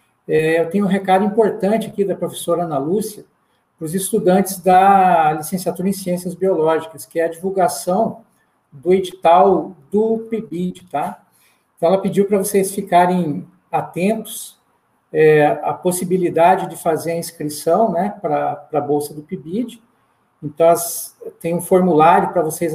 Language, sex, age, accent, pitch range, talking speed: Portuguese, male, 50-69, Brazilian, 160-195 Hz, 135 wpm